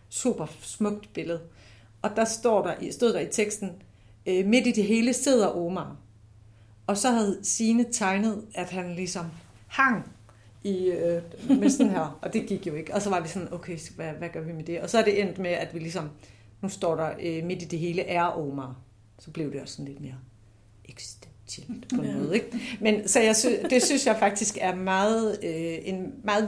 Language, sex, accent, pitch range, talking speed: Danish, female, native, 155-205 Hz, 195 wpm